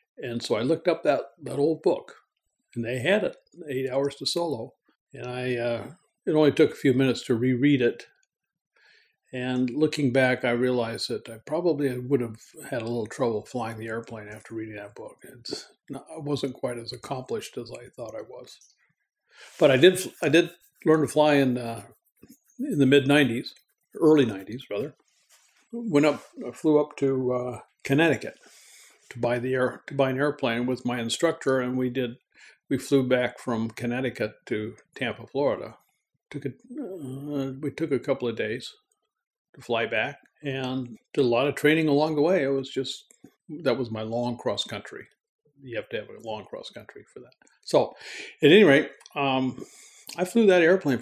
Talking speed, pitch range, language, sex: 185 wpm, 120-150 Hz, English, male